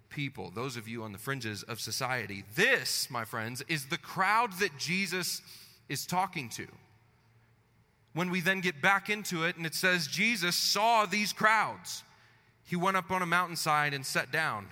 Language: English